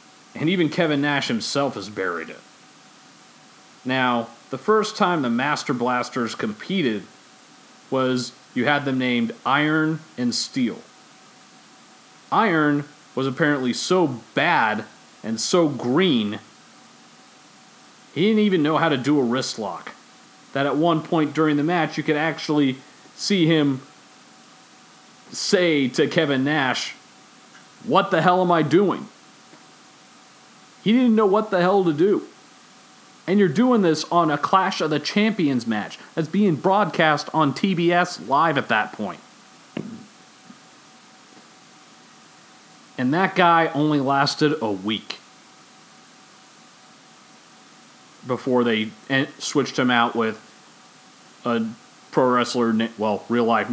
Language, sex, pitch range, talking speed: English, male, 120-180 Hz, 125 wpm